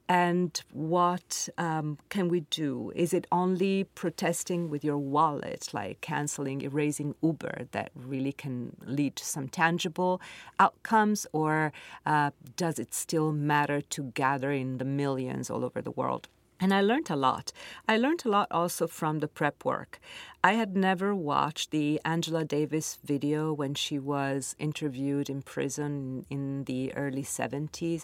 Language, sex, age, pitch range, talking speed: English, female, 40-59, 140-165 Hz, 155 wpm